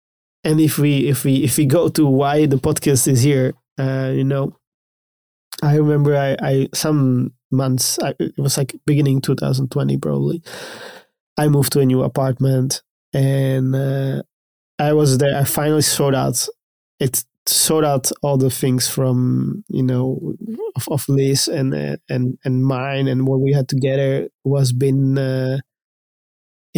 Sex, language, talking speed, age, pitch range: male, English, 155 wpm, 20-39, 130-145 Hz